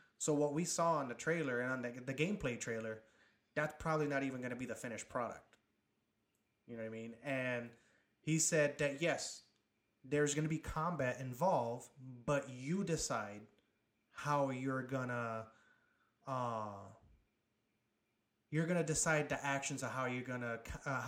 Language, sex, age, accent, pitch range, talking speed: English, male, 30-49, American, 115-150 Hz, 160 wpm